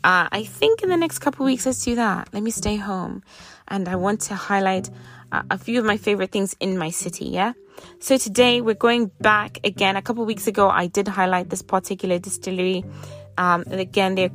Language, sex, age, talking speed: English, female, 20-39, 220 wpm